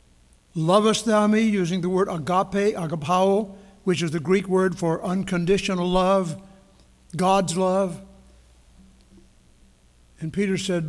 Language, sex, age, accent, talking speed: English, male, 60-79, American, 115 wpm